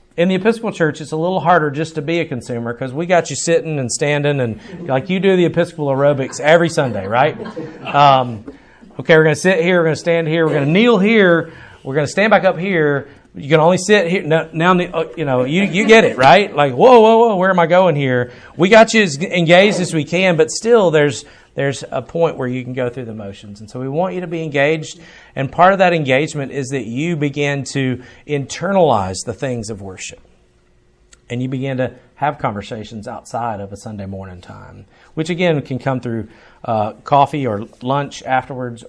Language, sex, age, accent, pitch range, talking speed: English, male, 40-59, American, 125-170 Hz, 220 wpm